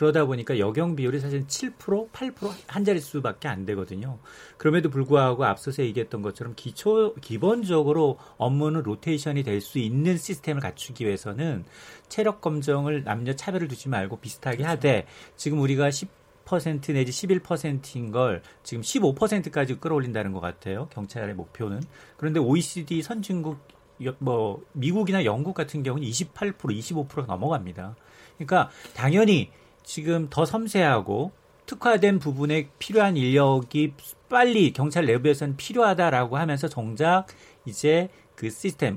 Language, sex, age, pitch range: Korean, male, 40-59, 125-180 Hz